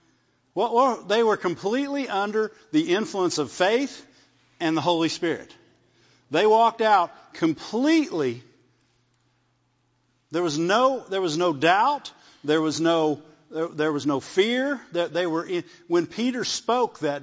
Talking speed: 130 wpm